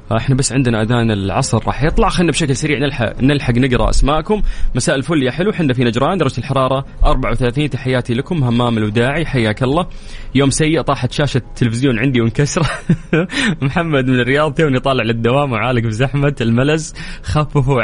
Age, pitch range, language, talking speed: 20-39, 110-145 Hz, English, 160 wpm